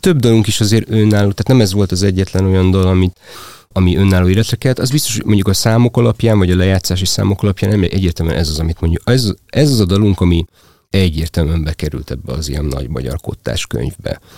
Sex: male